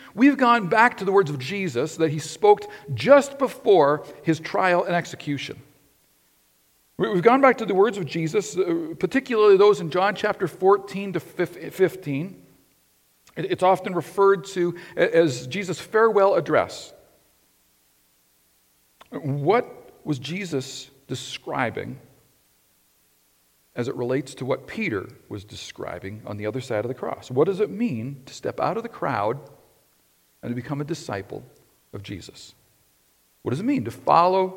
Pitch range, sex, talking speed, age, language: 125-200 Hz, male, 145 wpm, 50-69, English